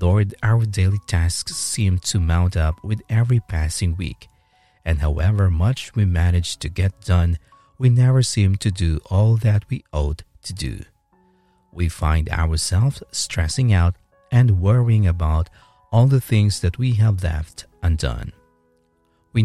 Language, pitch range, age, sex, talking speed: English, 85-110 Hz, 50-69, male, 150 wpm